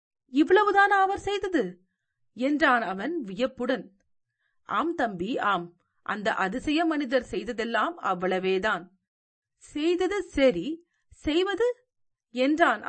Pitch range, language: 205-320 Hz, Tamil